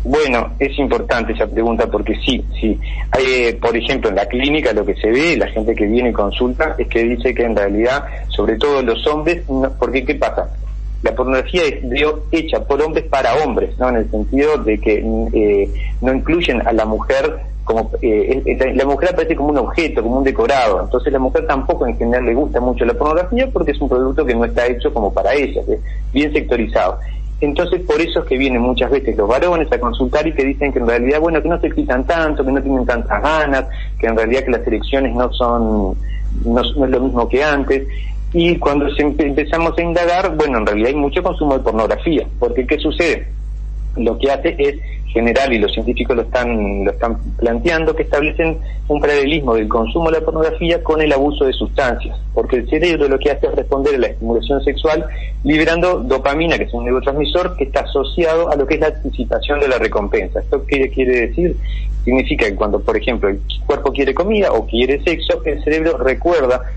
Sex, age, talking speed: male, 30-49, 210 wpm